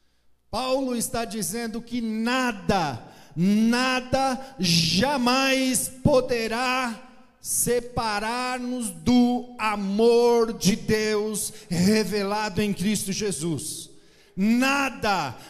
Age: 40-59